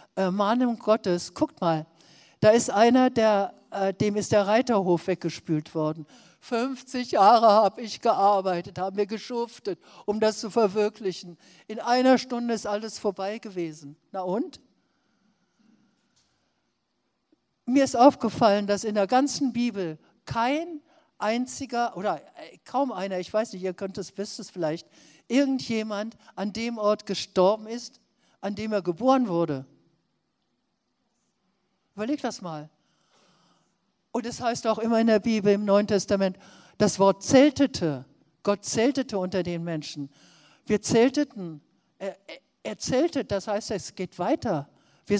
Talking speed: 135 wpm